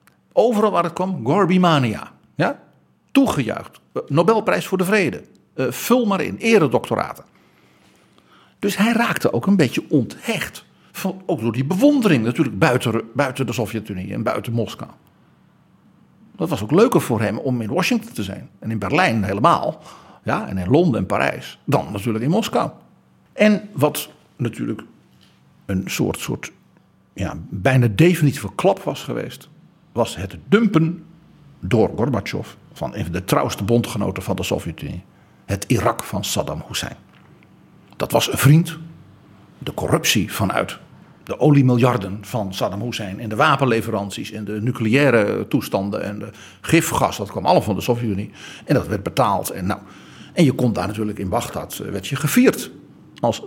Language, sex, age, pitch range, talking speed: Dutch, male, 60-79, 110-175 Hz, 155 wpm